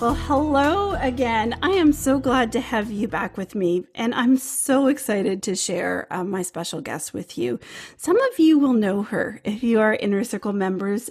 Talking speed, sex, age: 200 wpm, female, 40-59